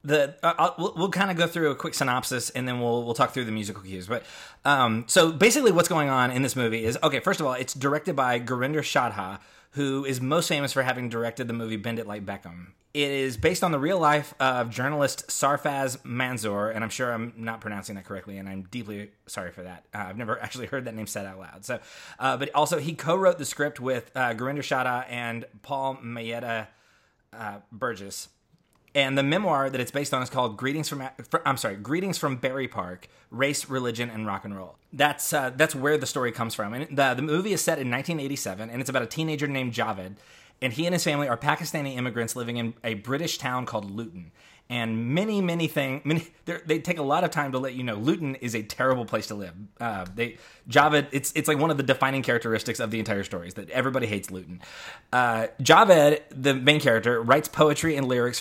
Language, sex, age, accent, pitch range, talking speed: English, male, 20-39, American, 115-145 Hz, 225 wpm